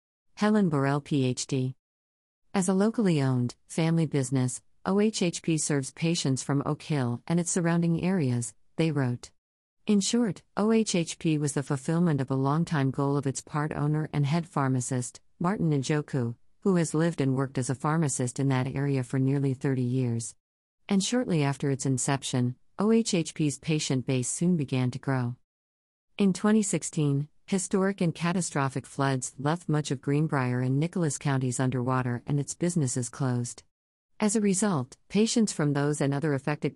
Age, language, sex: 40-59, English, female